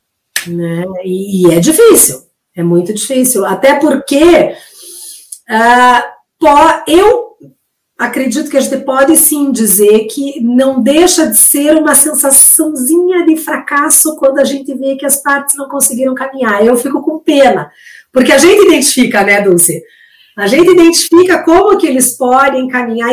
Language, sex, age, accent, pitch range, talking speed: Portuguese, female, 50-69, Brazilian, 195-300 Hz, 140 wpm